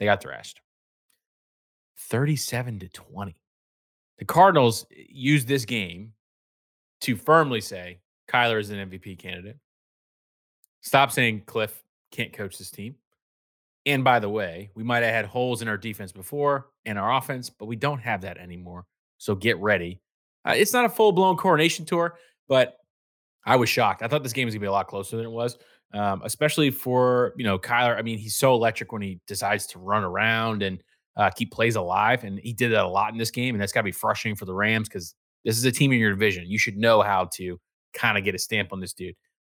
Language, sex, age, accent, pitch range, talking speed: English, male, 20-39, American, 100-130 Hz, 205 wpm